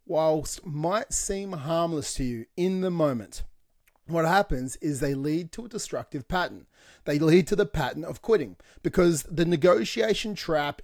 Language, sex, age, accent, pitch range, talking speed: English, male, 30-49, Australian, 150-190 Hz, 160 wpm